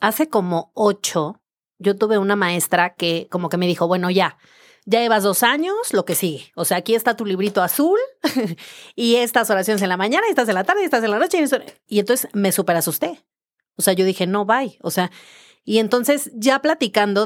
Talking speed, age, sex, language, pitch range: 215 wpm, 30-49, female, Spanish, 180-230 Hz